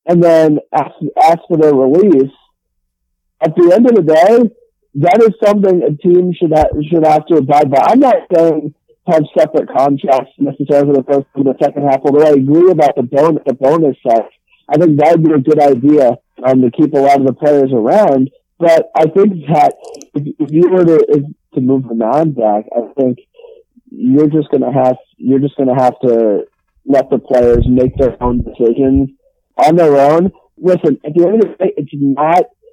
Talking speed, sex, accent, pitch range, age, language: 205 wpm, male, American, 130-170 Hz, 50-69, English